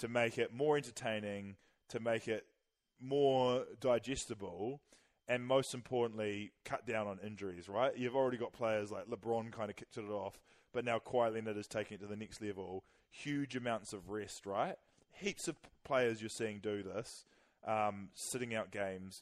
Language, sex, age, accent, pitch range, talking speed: English, male, 20-39, Australian, 100-125 Hz, 175 wpm